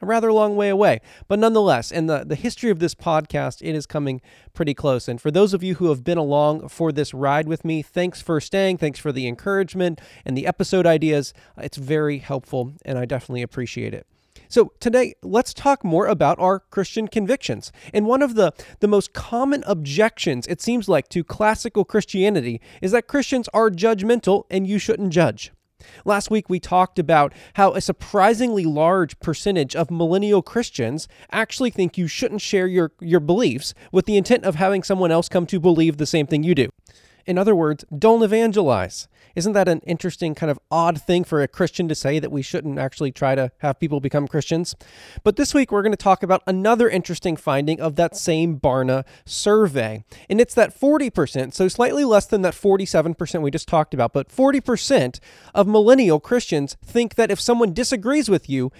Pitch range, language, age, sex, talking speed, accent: 150-210 Hz, English, 20-39, male, 195 wpm, American